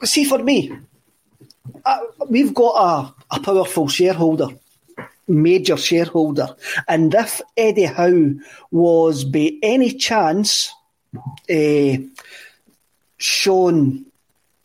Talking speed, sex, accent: 90 wpm, male, British